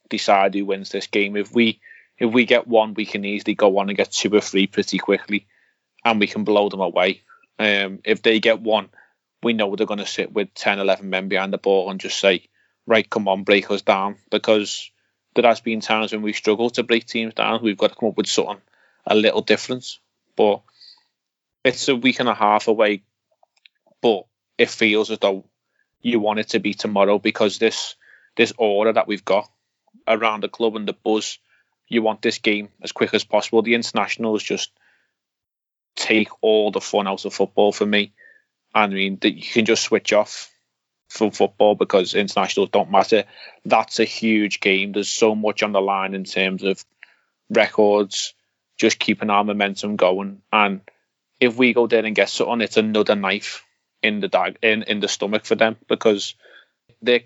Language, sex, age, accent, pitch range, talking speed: English, male, 20-39, British, 100-110 Hz, 190 wpm